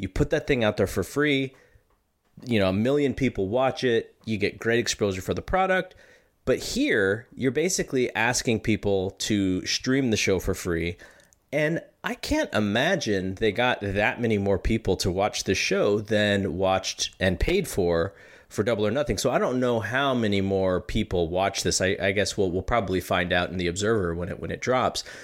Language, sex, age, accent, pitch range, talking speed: English, male, 30-49, American, 95-120 Hz, 195 wpm